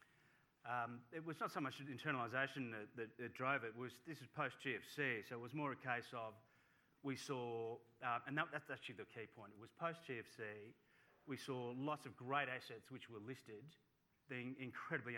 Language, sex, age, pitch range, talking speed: English, male, 30-49, 115-140 Hz, 200 wpm